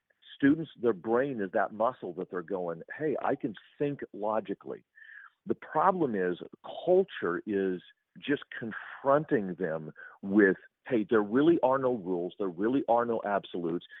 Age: 50-69